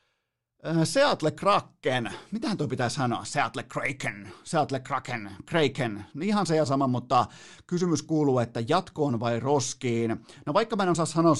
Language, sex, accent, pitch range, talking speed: Finnish, male, native, 120-150 Hz, 155 wpm